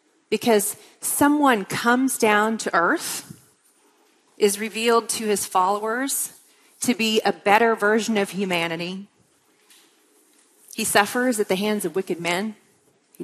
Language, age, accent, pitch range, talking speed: English, 40-59, American, 175-235 Hz, 120 wpm